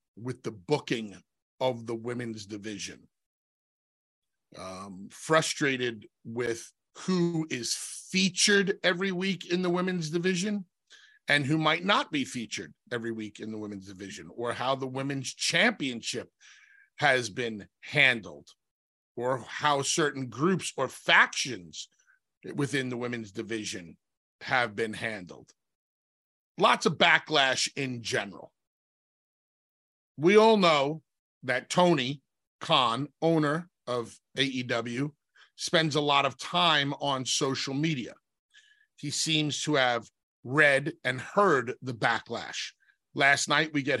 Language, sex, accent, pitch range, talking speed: English, male, American, 120-170 Hz, 120 wpm